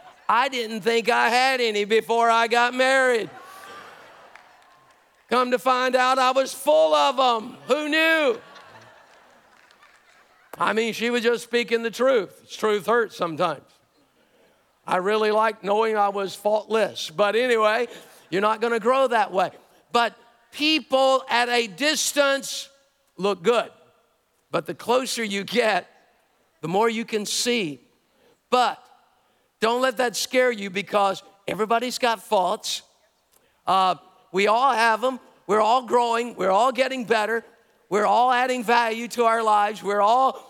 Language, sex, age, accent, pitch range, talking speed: English, male, 50-69, American, 215-255 Hz, 140 wpm